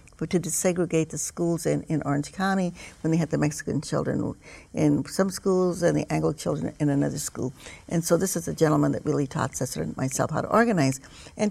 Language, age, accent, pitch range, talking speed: English, 60-79, American, 145-190 Hz, 210 wpm